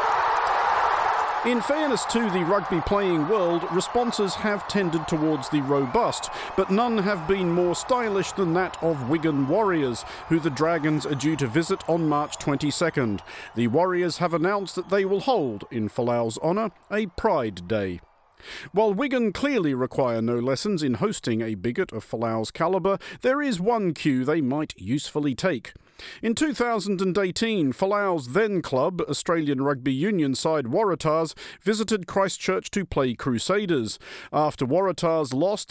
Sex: male